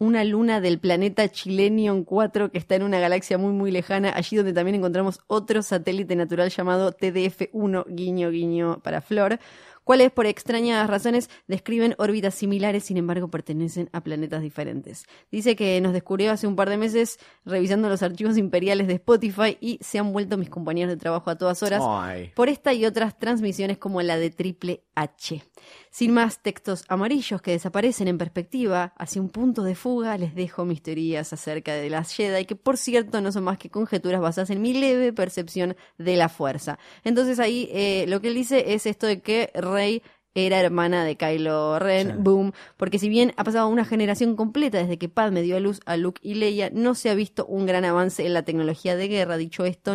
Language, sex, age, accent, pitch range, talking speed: Spanish, female, 20-39, Argentinian, 180-220 Hz, 195 wpm